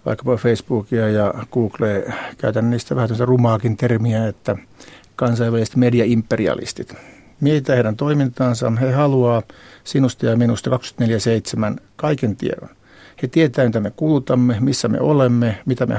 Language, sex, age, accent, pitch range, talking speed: Finnish, male, 60-79, native, 115-135 Hz, 125 wpm